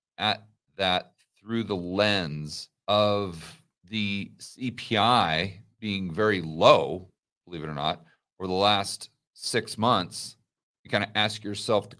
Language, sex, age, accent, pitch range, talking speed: English, male, 40-59, American, 85-105 Hz, 130 wpm